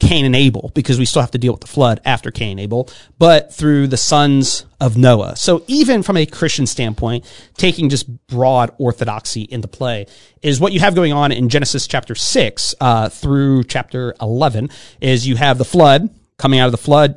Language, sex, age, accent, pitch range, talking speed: English, male, 30-49, American, 115-150 Hz, 200 wpm